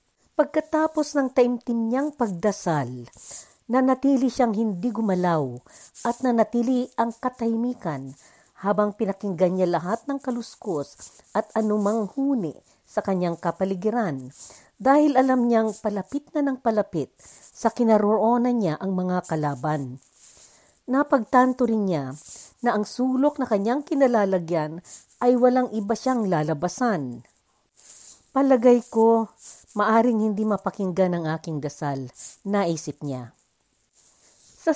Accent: native